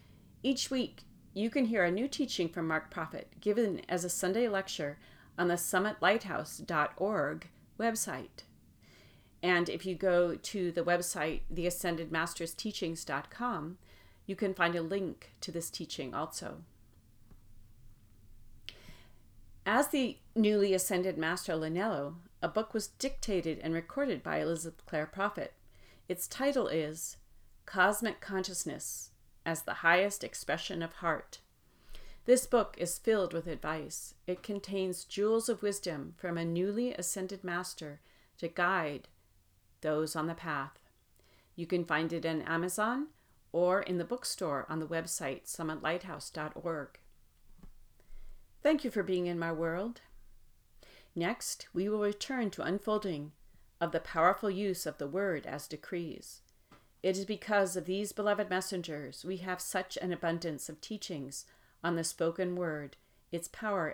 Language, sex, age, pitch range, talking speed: English, female, 40-59, 160-200 Hz, 135 wpm